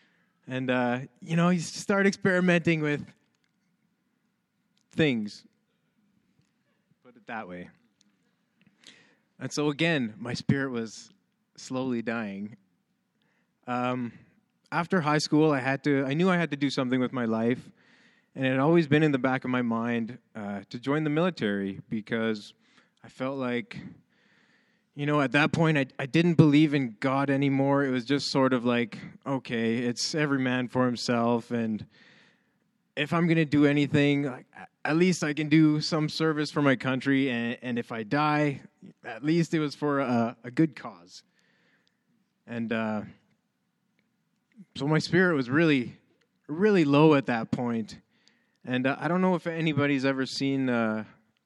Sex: male